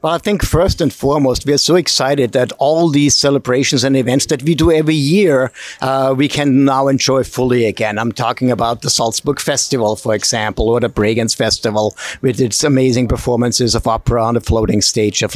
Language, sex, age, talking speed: English, male, 50-69, 200 wpm